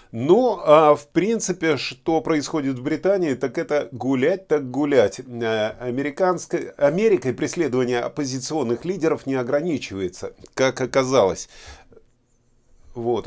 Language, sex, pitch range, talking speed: Russian, male, 115-150 Hz, 110 wpm